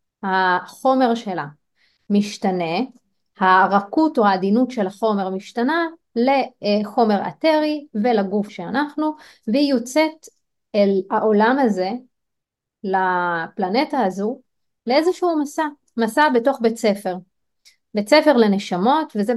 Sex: female